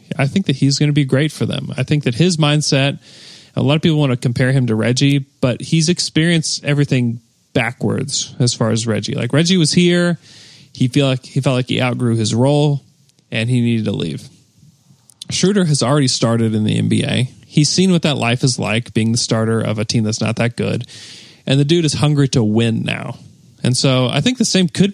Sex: male